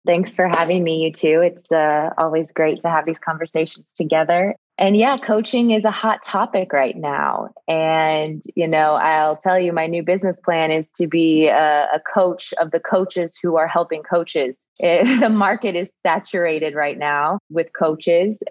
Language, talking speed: English, 180 wpm